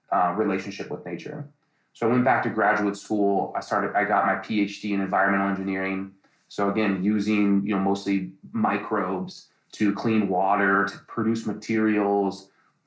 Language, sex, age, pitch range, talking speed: English, male, 20-39, 100-125 Hz, 160 wpm